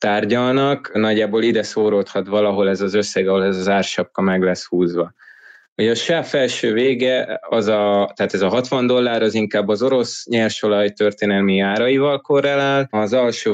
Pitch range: 100-140 Hz